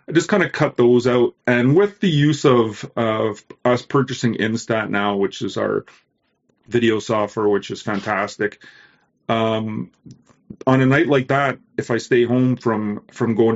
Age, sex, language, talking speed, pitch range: 30-49, male, English, 170 wpm, 105-120 Hz